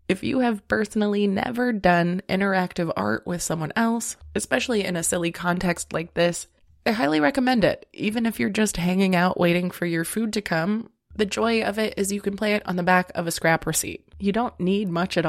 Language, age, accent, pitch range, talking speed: English, 20-39, American, 170-210 Hz, 215 wpm